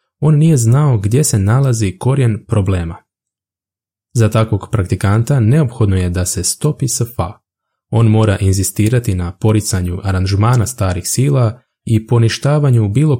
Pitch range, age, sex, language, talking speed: 95-120 Hz, 20-39, male, Croatian, 130 wpm